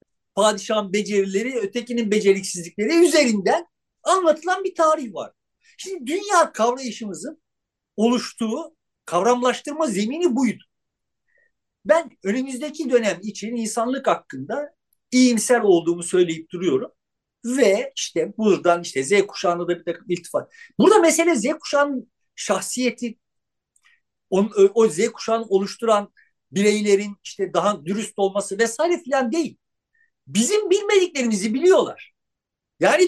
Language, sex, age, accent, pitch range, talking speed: Turkish, male, 50-69, native, 200-305 Hz, 105 wpm